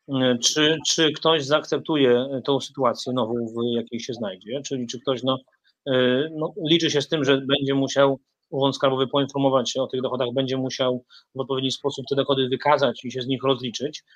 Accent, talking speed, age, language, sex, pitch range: native, 180 wpm, 30-49, Polish, male, 135-160 Hz